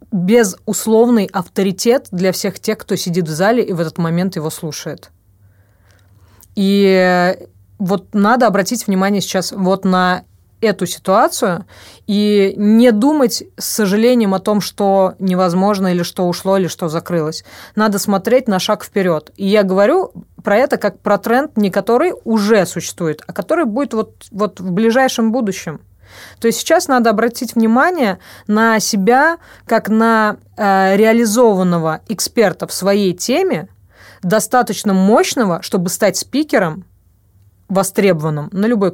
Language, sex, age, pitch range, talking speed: Russian, female, 30-49, 175-225 Hz, 135 wpm